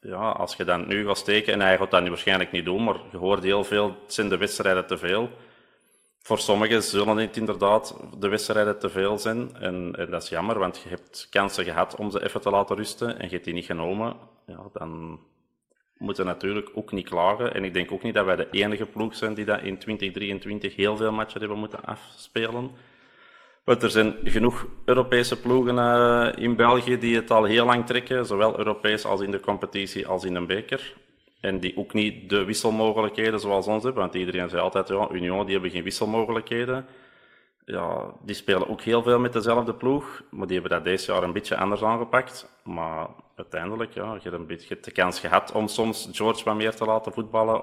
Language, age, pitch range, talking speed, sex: Dutch, 30-49, 100-115 Hz, 210 wpm, male